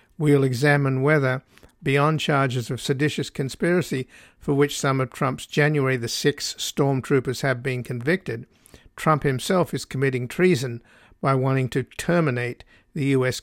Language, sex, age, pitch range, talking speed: English, male, 50-69, 130-145 Hz, 140 wpm